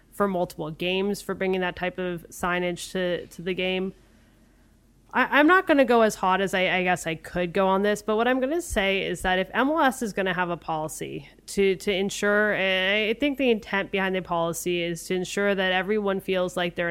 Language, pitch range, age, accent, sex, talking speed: English, 175-205 Hz, 20-39, American, female, 230 wpm